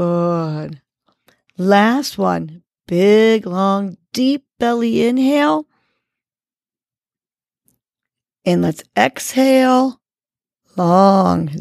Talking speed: 60 wpm